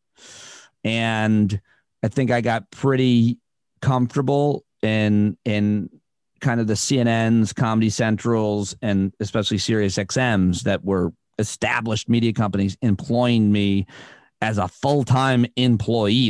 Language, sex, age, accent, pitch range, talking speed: English, male, 40-59, American, 105-125 Hz, 110 wpm